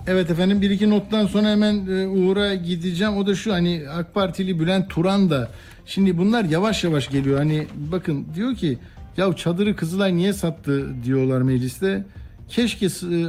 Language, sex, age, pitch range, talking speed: Turkish, male, 60-79, 145-190 Hz, 165 wpm